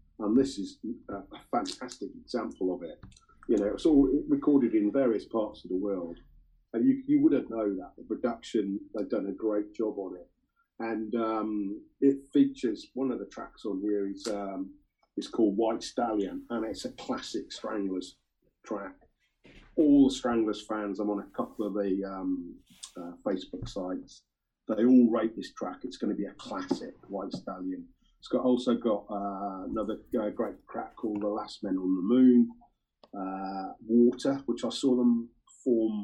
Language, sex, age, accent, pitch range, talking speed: English, male, 40-59, British, 100-130 Hz, 170 wpm